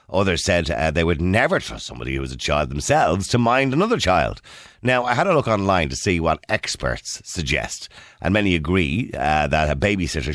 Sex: male